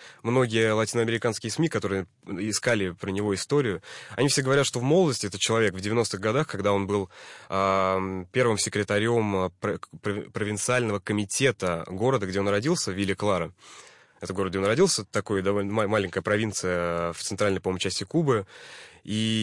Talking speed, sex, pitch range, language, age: 150 wpm, male, 95-115 Hz, Russian, 20-39